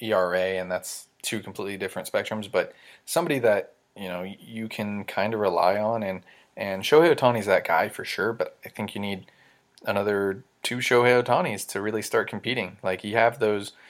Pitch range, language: 95-120 Hz, English